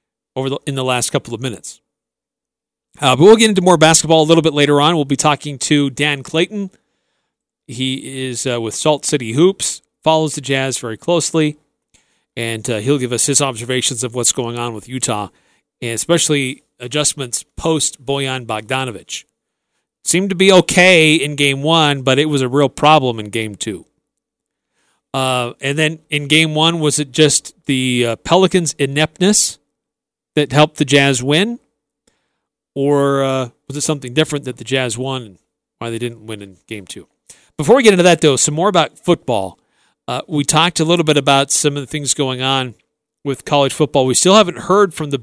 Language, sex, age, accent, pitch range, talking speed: English, male, 40-59, American, 130-160 Hz, 185 wpm